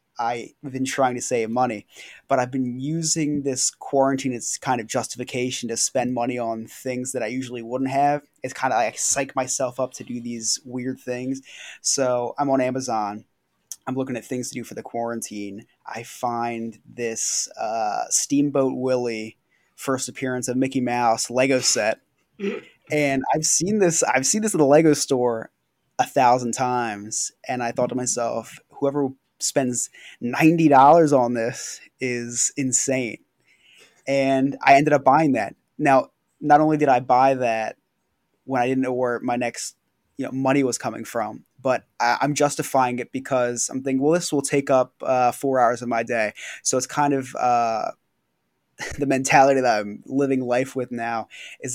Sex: male